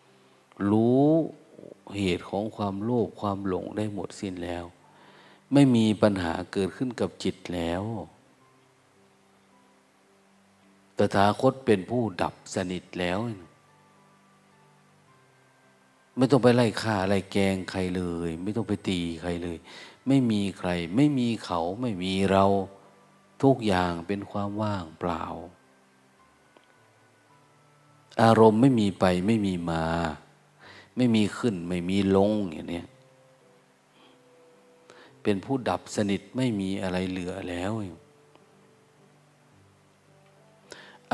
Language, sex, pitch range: Thai, male, 90-110 Hz